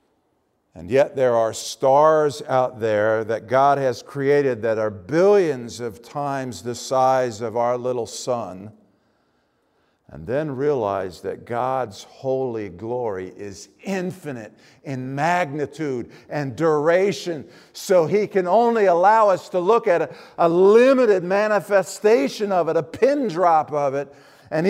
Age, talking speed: 50-69, 135 wpm